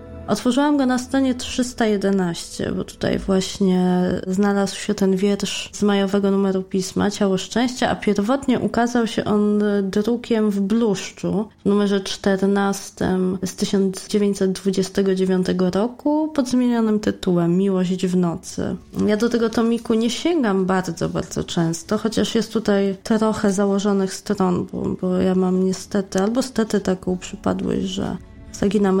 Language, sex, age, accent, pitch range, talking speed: Polish, female, 20-39, native, 190-210 Hz, 130 wpm